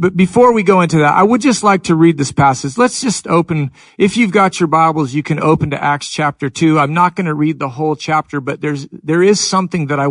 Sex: male